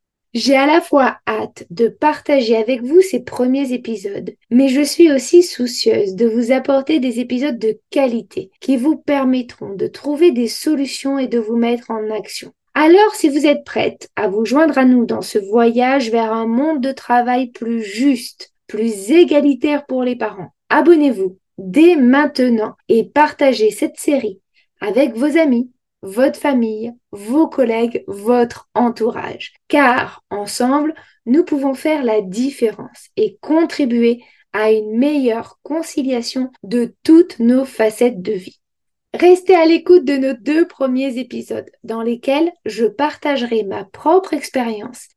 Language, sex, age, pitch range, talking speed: French, female, 20-39, 235-295 Hz, 150 wpm